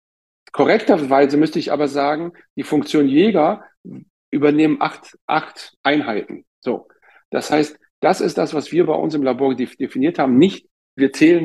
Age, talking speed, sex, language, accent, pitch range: 50-69, 150 wpm, male, German, German, 120-150 Hz